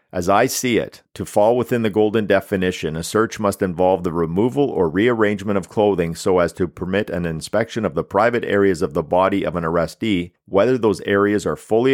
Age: 50-69